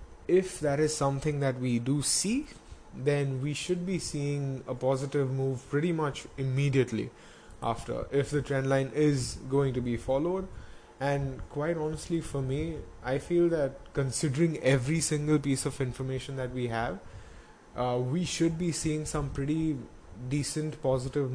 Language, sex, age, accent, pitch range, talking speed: English, male, 20-39, Indian, 120-150 Hz, 155 wpm